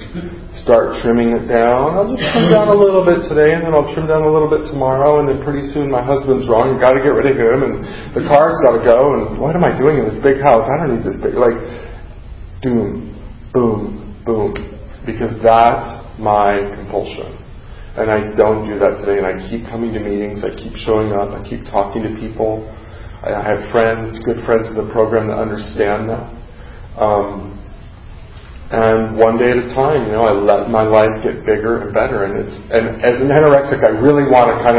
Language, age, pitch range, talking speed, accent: English, 40-59, 110-135 Hz, 210 wpm, American